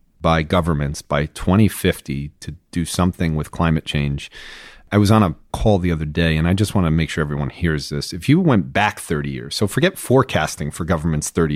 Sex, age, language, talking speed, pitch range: male, 40-59, English, 210 wpm, 80-105 Hz